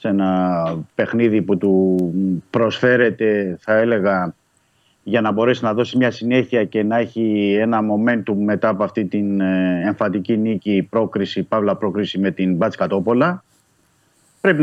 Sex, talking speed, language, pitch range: male, 135 wpm, Greek, 100-135 Hz